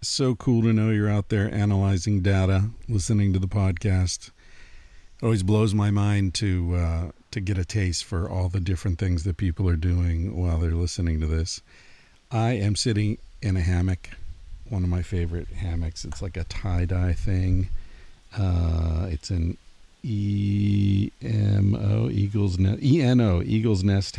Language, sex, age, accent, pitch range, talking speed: English, male, 50-69, American, 85-100 Hz, 165 wpm